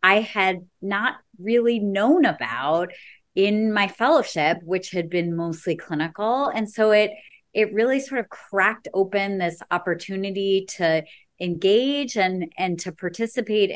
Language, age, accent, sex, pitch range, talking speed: English, 30-49, American, female, 175-210 Hz, 135 wpm